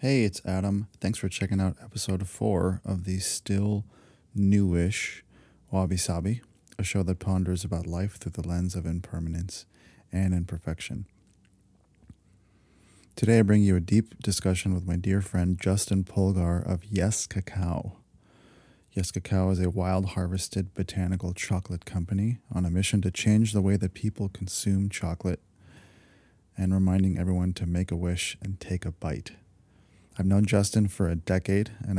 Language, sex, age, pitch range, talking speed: English, male, 30-49, 90-100 Hz, 155 wpm